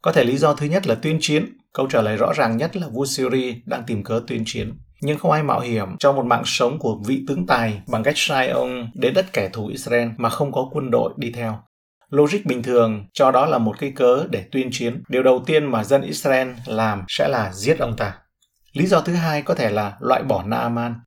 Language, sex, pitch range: Vietnamese, male, 115-150 Hz